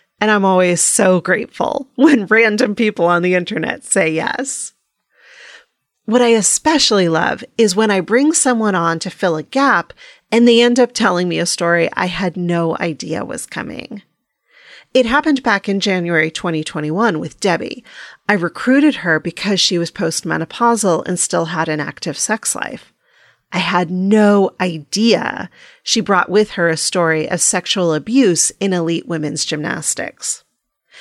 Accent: American